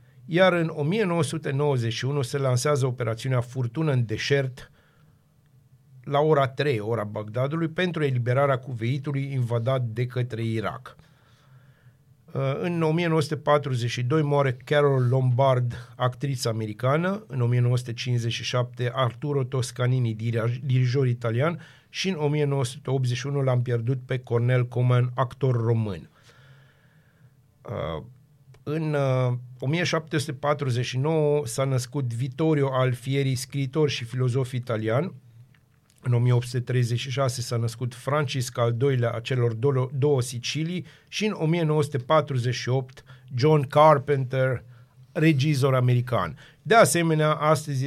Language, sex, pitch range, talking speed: Romanian, male, 125-150 Hz, 95 wpm